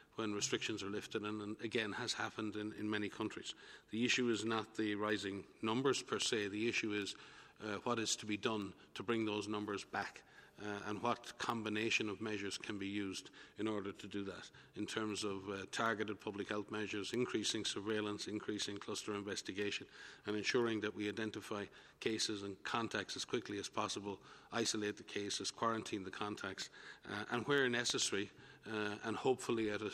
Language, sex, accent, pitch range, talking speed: English, male, Irish, 100-110 Hz, 175 wpm